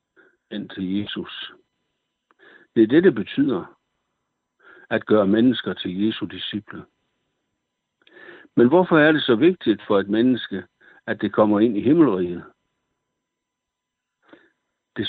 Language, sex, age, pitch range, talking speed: Danish, male, 60-79, 95-115 Hz, 120 wpm